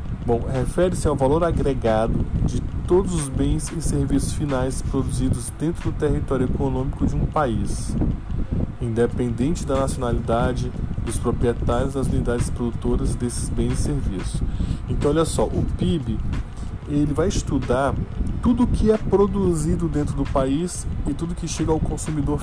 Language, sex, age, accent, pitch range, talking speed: Portuguese, male, 20-39, Brazilian, 115-145 Hz, 145 wpm